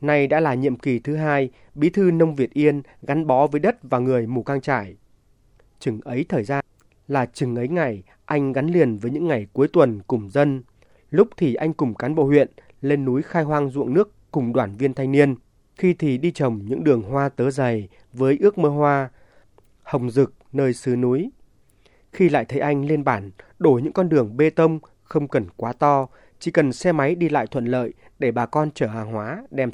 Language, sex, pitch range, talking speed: Vietnamese, male, 120-155 Hz, 215 wpm